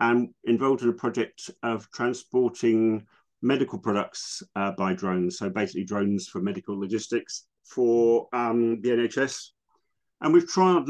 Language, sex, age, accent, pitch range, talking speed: English, male, 50-69, British, 100-125 Hz, 140 wpm